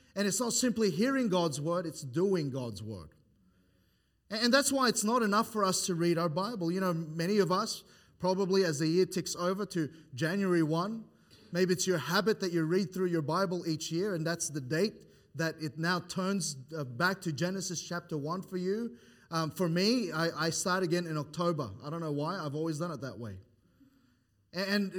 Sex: male